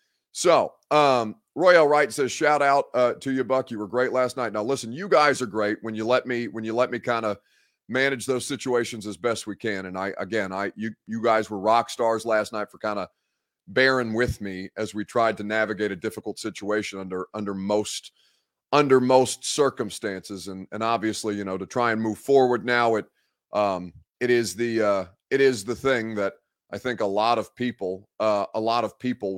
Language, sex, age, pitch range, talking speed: English, male, 30-49, 100-125 Hz, 210 wpm